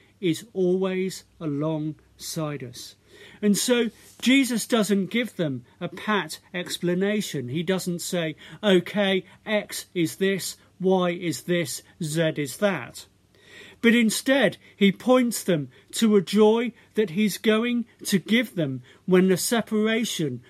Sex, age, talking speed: male, 50-69, 125 wpm